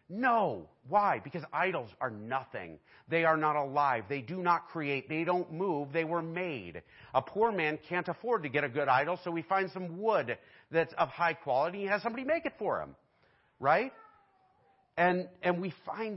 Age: 50-69